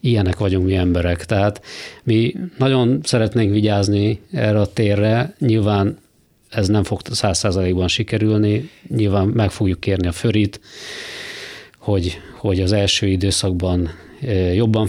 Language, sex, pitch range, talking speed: Hungarian, male, 95-110 Hz, 125 wpm